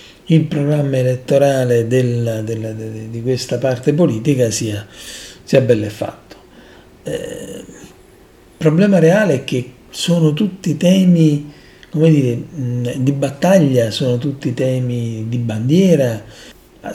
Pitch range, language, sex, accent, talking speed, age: 120-145 Hz, Italian, male, native, 115 wpm, 40-59